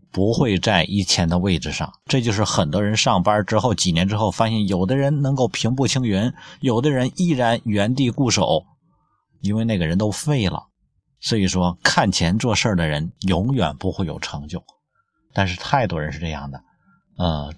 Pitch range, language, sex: 90-120 Hz, Chinese, male